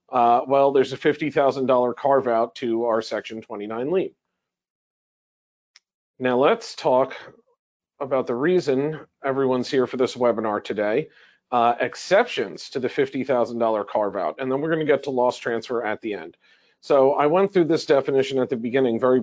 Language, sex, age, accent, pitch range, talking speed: English, male, 40-59, American, 125-150 Hz, 160 wpm